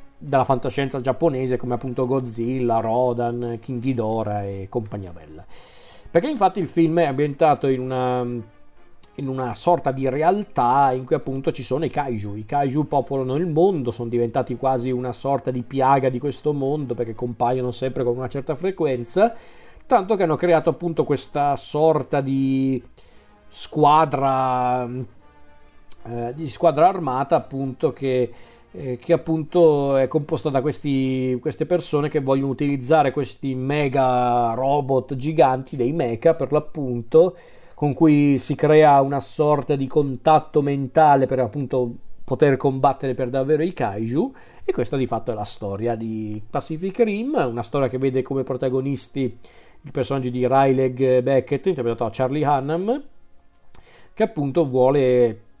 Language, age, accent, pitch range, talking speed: Italian, 40-59, native, 125-150 Hz, 145 wpm